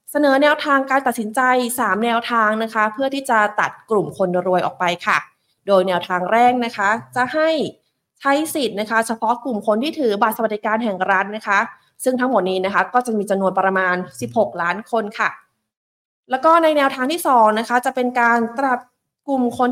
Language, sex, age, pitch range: Thai, female, 20-39, 190-255 Hz